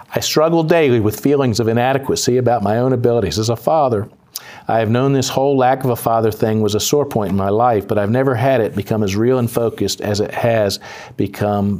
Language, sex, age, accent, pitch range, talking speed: English, male, 40-59, American, 105-125 Hz, 230 wpm